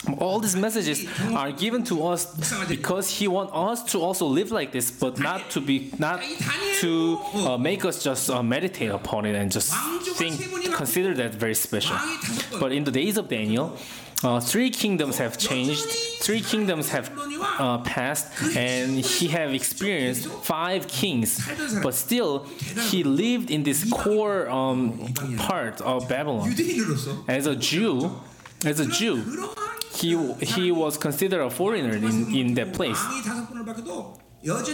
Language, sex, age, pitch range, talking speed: English, male, 20-39, 125-200 Hz, 150 wpm